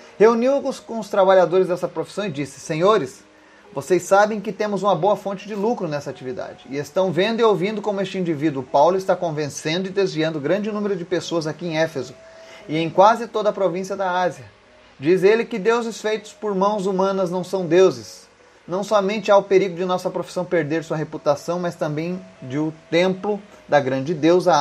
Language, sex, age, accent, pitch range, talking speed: Portuguese, male, 30-49, Brazilian, 150-200 Hz, 195 wpm